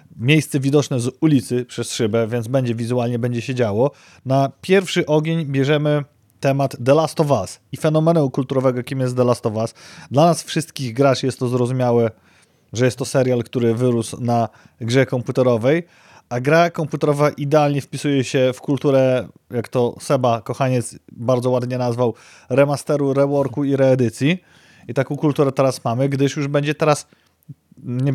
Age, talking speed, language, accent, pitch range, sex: 30-49, 160 wpm, Polish, native, 125-150 Hz, male